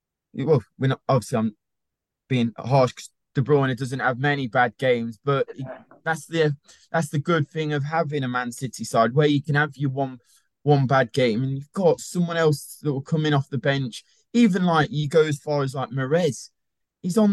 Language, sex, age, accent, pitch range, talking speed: English, male, 20-39, British, 130-170 Hz, 210 wpm